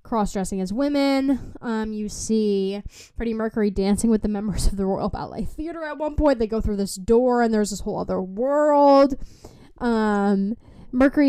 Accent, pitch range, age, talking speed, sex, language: American, 195-240 Hz, 10-29, 175 wpm, female, English